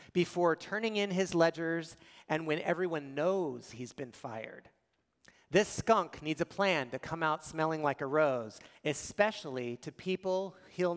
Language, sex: English, male